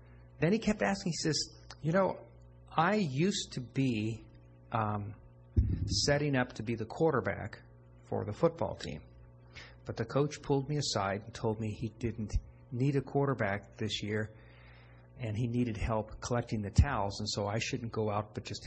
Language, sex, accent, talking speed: English, male, American, 175 wpm